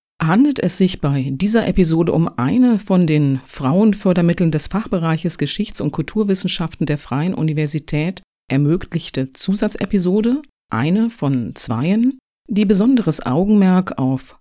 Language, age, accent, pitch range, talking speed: German, 50-69, German, 140-195 Hz, 115 wpm